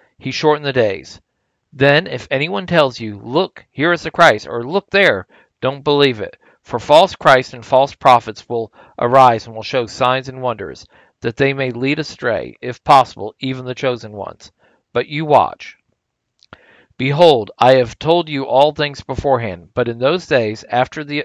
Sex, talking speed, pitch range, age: male, 170 wpm, 120-150 Hz, 40-59